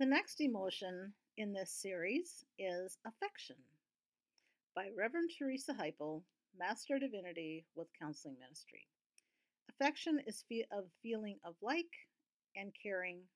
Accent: American